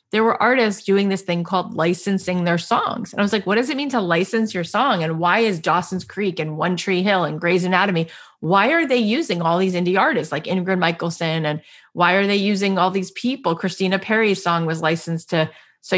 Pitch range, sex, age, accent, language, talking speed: 175-235 Hz, female, 30-49, American, English, 225 wpm